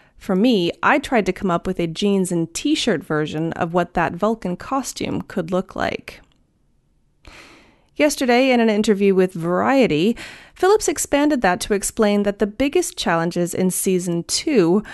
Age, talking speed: 30-49, 155 wpm